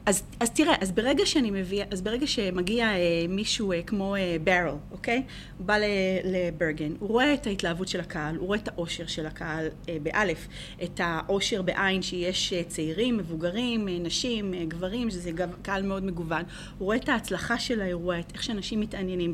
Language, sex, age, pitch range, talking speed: Hebrew, female, 30-49, 170-210 Hz, 190 wpm